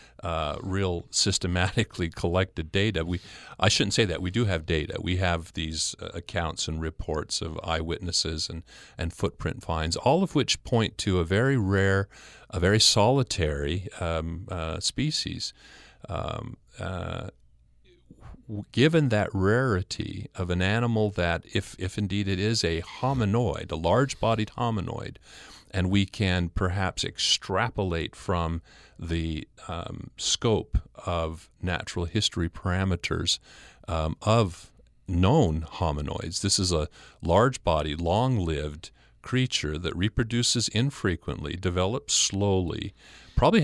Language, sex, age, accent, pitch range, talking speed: English, male, 40-59, American, 80-110 Hz, 125 wpm